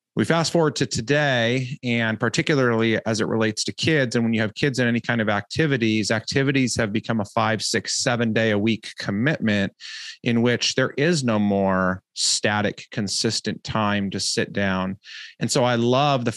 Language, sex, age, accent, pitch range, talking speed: English, male, 30-49, American, 110-130 Hz, 185 wpm